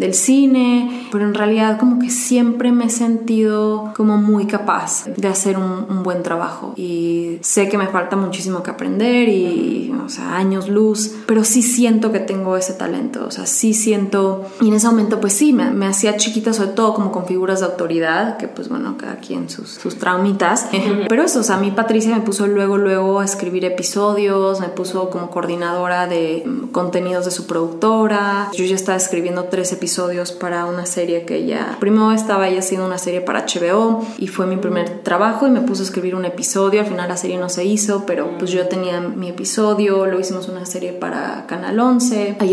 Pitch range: 185-220 Hz